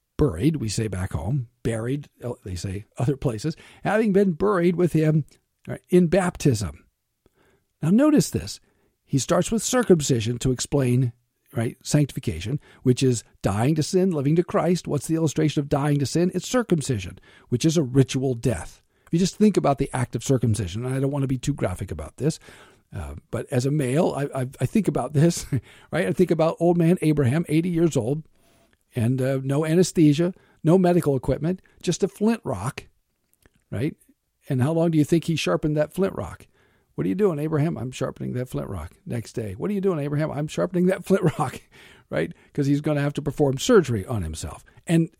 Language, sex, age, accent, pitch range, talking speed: English, male, 50-69, American, 125-170 Hz, 195 wpm